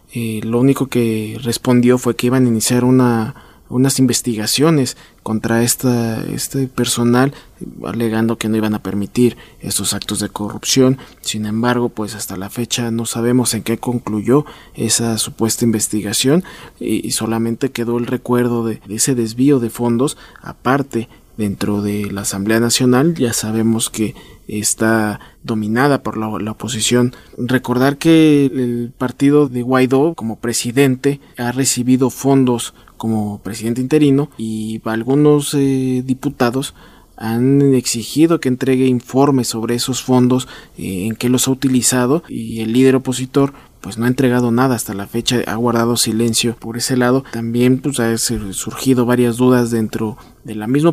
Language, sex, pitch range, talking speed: Spanish, male, 115-130 Hz, 150 wpm